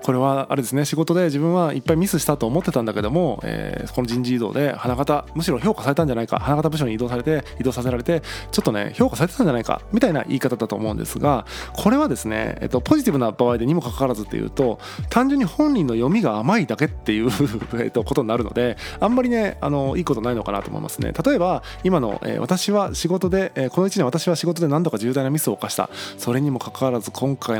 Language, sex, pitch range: Japanese, male, 125-185 Hz